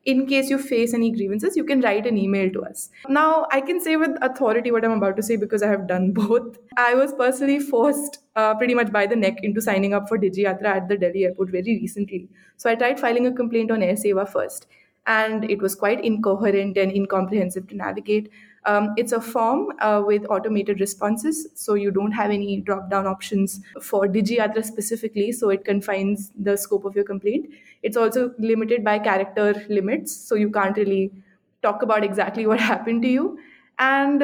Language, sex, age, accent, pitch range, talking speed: English, female, 20-39, Indian, 200-235 Hz, 200 wpm